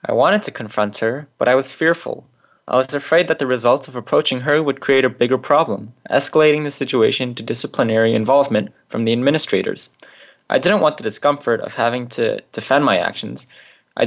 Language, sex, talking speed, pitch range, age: English, male, 190 wpm, 115-145 Hz, 20-39